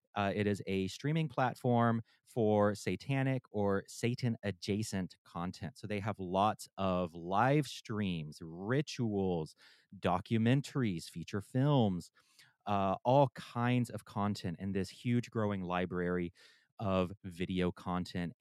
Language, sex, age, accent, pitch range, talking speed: English, male, 30-49, American, 95-120 Hz, 115 wpm